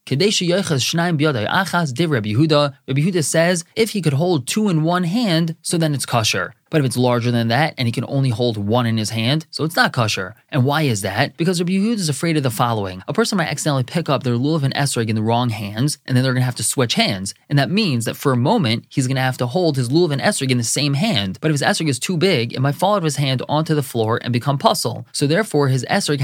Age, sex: 20-39, male